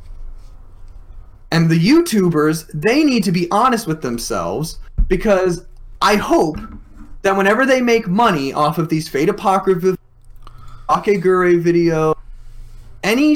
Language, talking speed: English, 115 wpm